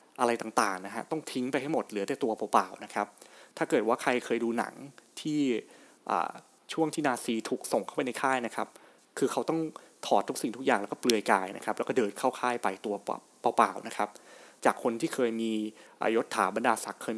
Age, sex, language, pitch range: 20-39, male, Thai, 110-155 Hz